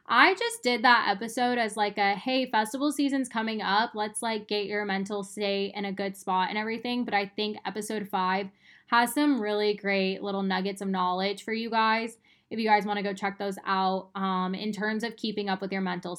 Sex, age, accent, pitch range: female, 10-29, American, 200-240 Hz